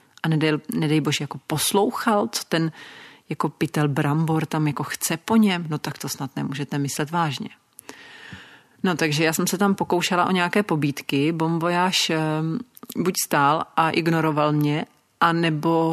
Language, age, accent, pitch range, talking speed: Czech, 40-59, native, 150-170 Hz, 155 wpm